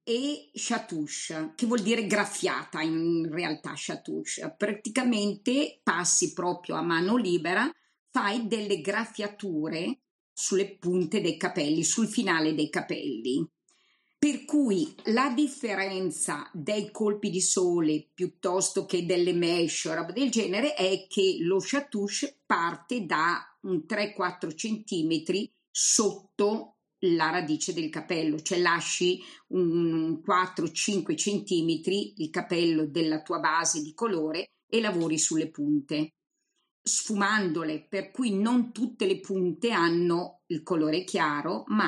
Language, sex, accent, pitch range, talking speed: Italian, female, native, 170-225 Hz, 120 wpm